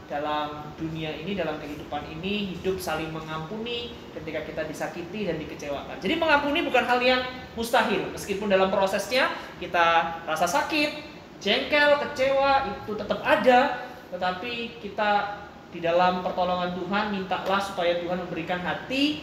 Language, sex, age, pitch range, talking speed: Malay, male, 20-39, 170-215 Hz, 130 wpm